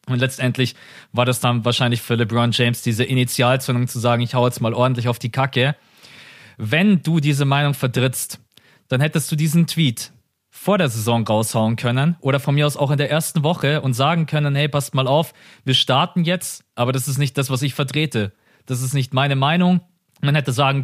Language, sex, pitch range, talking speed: German, male, 125-150 Hz, 205 wpm